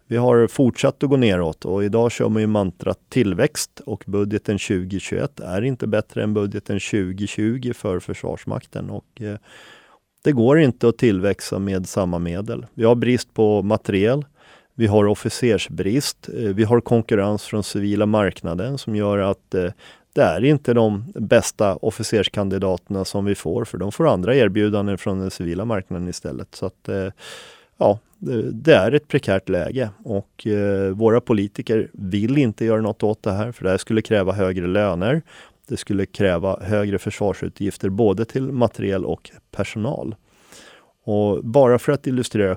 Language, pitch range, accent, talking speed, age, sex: Swedish, 95-115 Hz, native, 155 wpm, 30-49, male